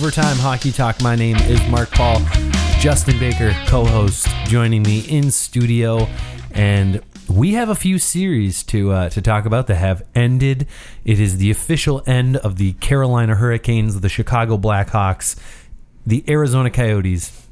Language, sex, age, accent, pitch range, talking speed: English, male, 30-49, American, 95-130 Hz, 150 wpm